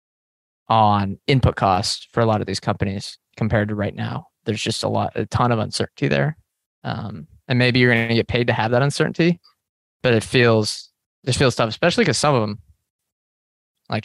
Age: 20-39